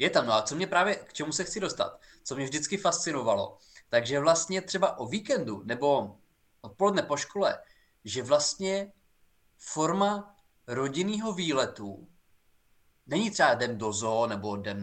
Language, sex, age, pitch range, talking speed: Czech, male, 20-39, 120-195 Hz, 150 wpm